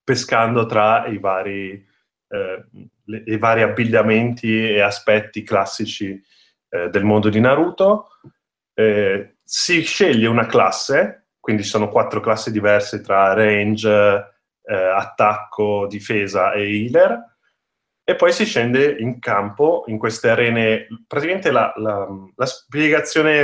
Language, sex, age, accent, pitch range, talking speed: Italian, male, 30-49, native, 105-140 Hz, 115 wpm